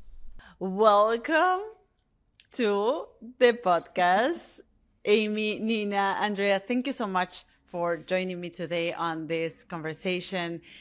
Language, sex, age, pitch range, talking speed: English, female, 30-49, 170-210 Hz, 100 wpm